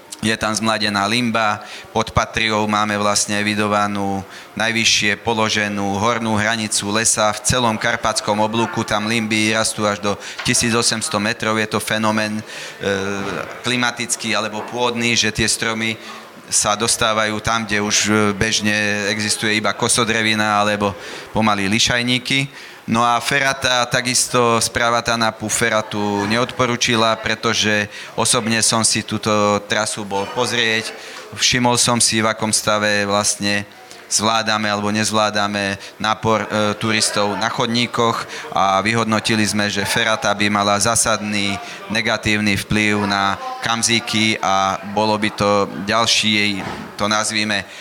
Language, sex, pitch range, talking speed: Slovak, male, 105-115 Hz, 120 wpm